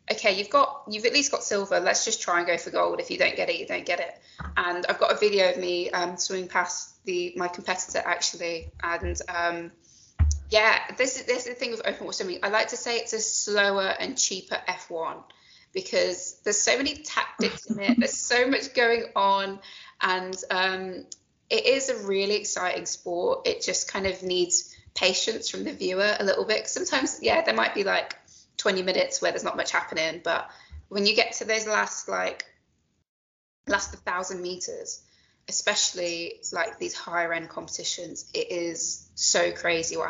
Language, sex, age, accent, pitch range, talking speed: English, female, 20-39, British, 175-245 Hz, 190 wpm